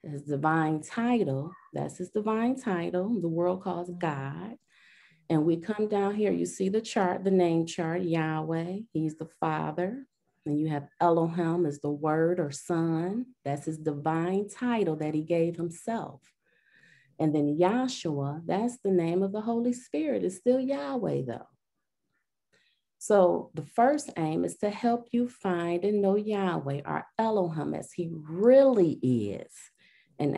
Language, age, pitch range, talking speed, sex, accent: English, 30-49, 160-210 Hz, 150 wpm, female, American